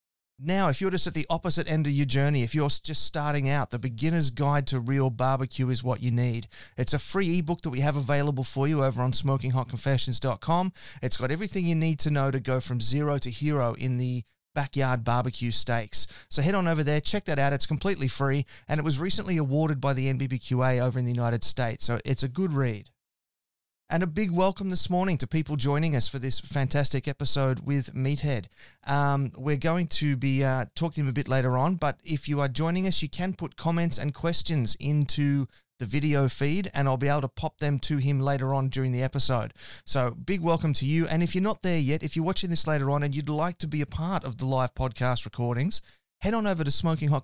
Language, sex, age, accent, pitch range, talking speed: English, male, 30-49, Australian, 130-160 Hz, 230 wpm